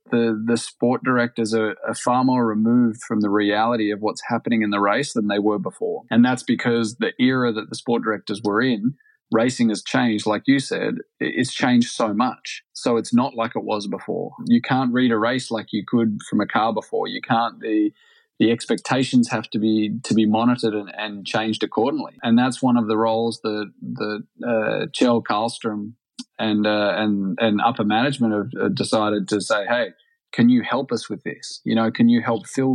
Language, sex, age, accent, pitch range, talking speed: English, male, 20-39, Australian, 110-130 Hz, 205 wpm